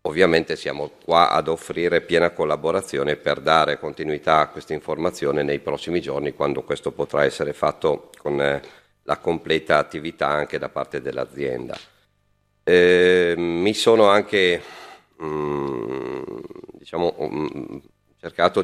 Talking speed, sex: 105 wpm, male